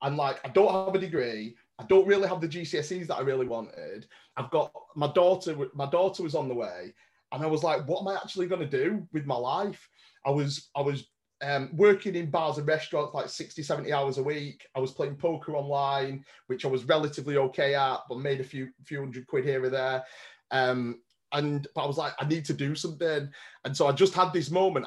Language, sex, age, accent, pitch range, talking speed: English, male, 30-49, British, 135-170 Hz, 230 wpm